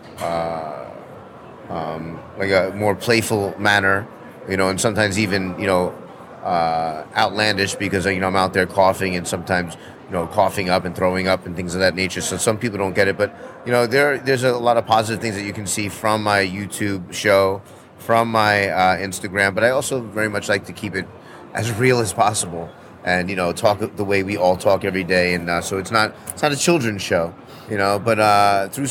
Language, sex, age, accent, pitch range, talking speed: English, male, 30-49, American, 90-110 Hz, 215 wpm